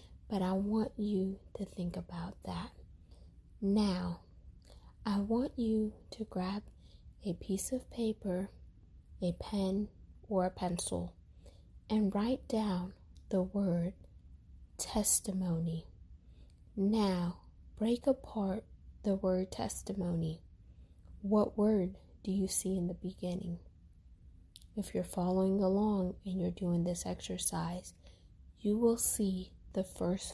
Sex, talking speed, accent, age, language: female, 115 wpm, American, 20-39, English